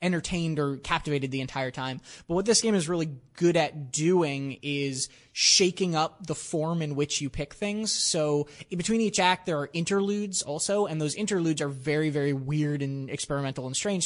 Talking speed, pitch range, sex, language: 190 wpm, 145-175 Hz, male, English